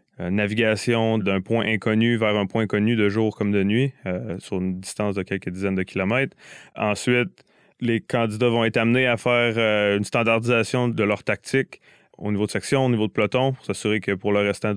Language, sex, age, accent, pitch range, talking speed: French, male, 20-39, Canadian, 105-120 Hz, 205 wpm